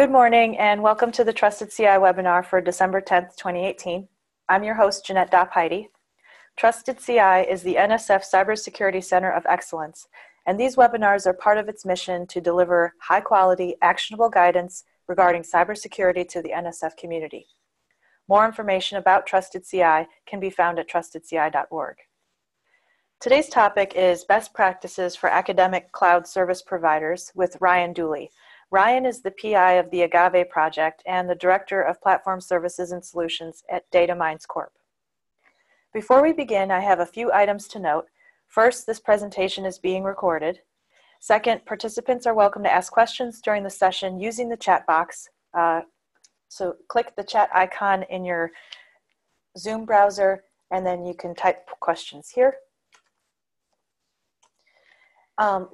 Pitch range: 180-215 Hz